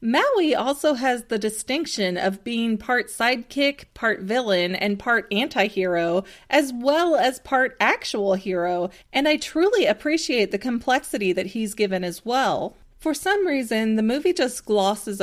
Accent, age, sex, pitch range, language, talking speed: American, 30-49, female, 195-255 Hz, English, 150 wpm